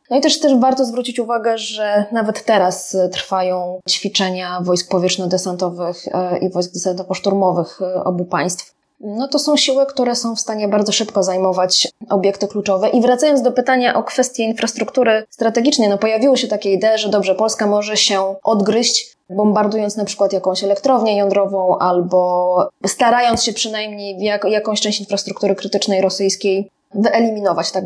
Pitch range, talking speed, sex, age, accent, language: 185-225 Hz, 150 wpm, female, 20-39, native, Polish